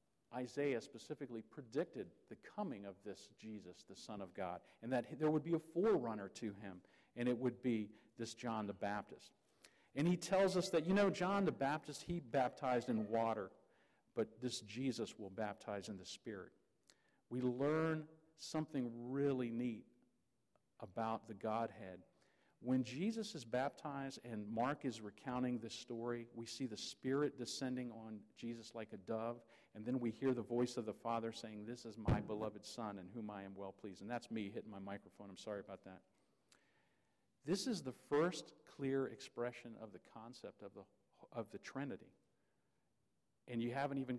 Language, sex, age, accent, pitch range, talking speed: English, male, 50-69, American, 110-135 Hz, 170 wpm